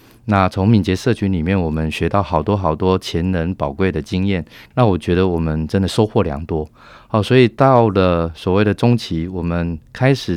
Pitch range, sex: 85-110 Hz, male